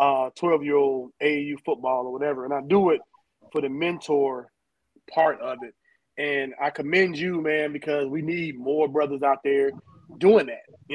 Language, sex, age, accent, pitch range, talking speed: English, male, 30-49, American, 140-170 Hz, 170 wpm